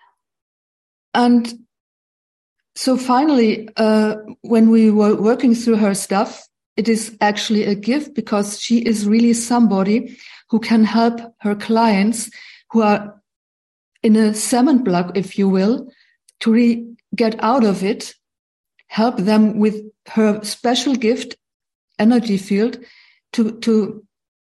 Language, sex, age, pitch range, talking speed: English, female, 50-69, 205-235 Hz, 125 wpm